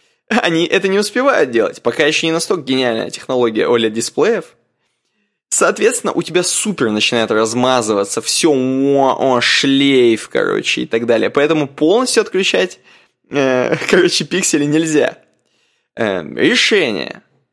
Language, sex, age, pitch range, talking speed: Russian, male, 20-39, 125-180 Hz, 105 wpm